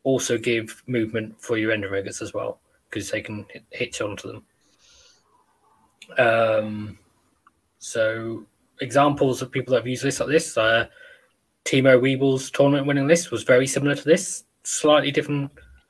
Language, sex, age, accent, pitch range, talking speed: English, male, 20-39, British, 120-150 Hz, 145 wpm